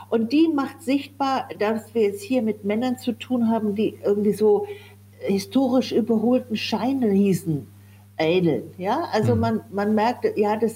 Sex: female